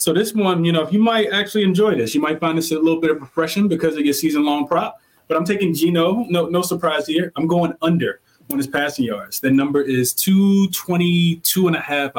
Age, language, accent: 20-39, English, American